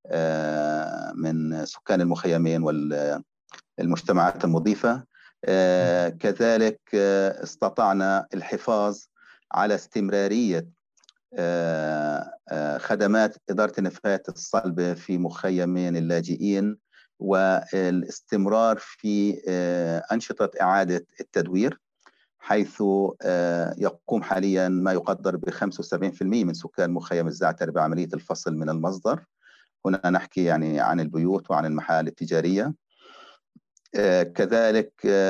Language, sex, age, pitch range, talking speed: Arabic, male, 40-59, 85-100 Hz, 80 wpm